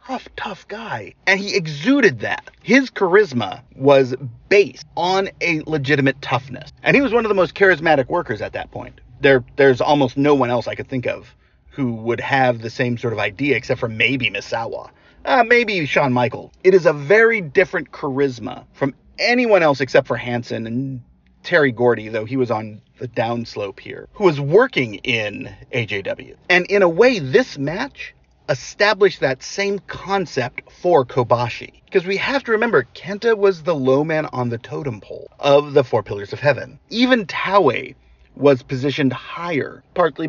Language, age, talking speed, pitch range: English, 40-59, 175 wpm, 125-190 Hz